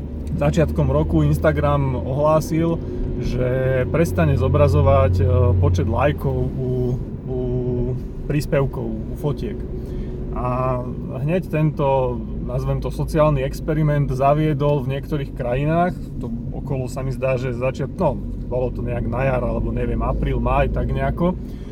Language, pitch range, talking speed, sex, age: Slovak, 125-150 Hz, 120 wpm, male, 30-49